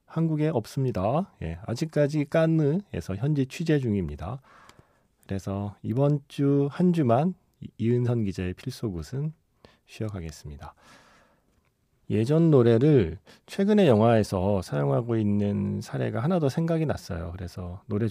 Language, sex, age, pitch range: Korean, male, 40-59, 95-150 Hz